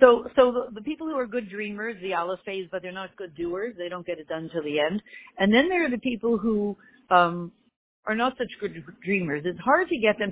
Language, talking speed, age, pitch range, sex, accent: English, 250 wpm, 50-69, 180-240 Hz, female, American